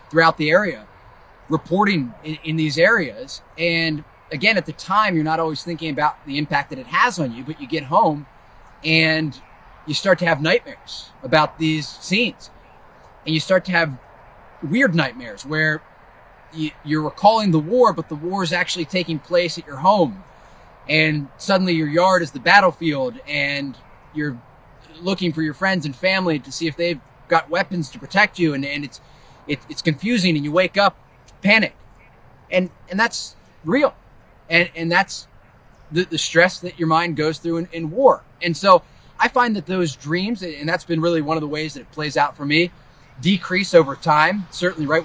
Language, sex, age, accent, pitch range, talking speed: English, male, 30-49, American, 150-180 Hz, 185 wpm